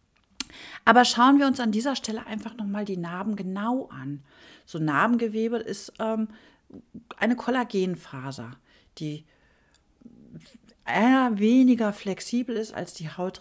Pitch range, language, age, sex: 175-235 Hz, German, 50-69, female